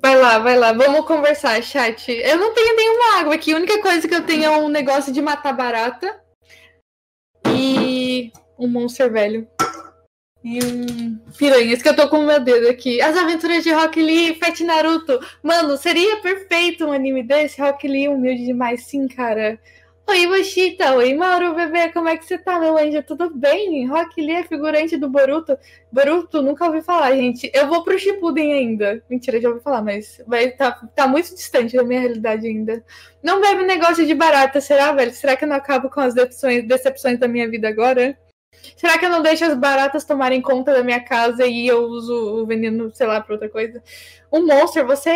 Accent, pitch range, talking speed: Brazilian, 250-330 Hz, 195 wpm